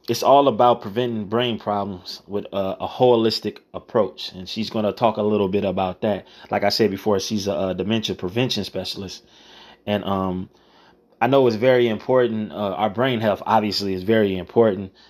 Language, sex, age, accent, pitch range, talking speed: English, male, 20-39, American, 100-115 Hz, 185 wpm